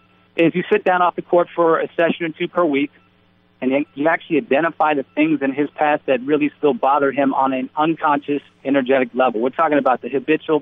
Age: 40-59